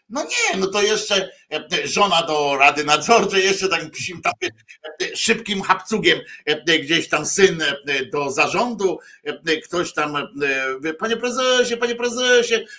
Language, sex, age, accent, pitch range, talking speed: Polish, male, 50-69, native, 160-225 Hz, 125 wpm